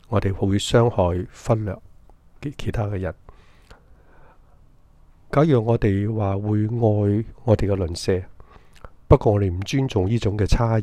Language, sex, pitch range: Chinese, male, 90-110 Hz